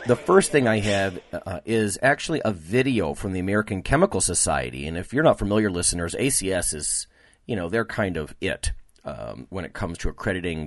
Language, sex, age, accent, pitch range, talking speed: English, male, 40-59, American, 85-110 Hz, 190 wpm